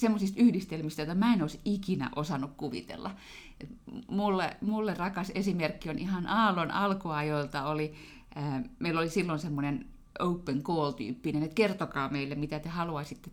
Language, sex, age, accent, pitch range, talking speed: Finnish, female, 30-49, native, 160-220 Hz, 135 wpm